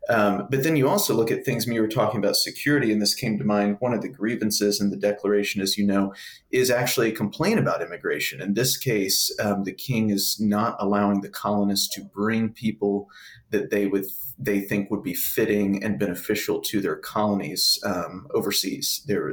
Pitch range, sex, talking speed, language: 100-110 Hz, male, 200 wpm, English